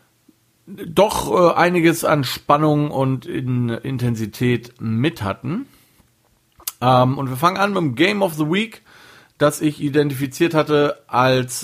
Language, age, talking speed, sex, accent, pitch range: German, 40-59, 135 wpm, male, German, 120-160 Hz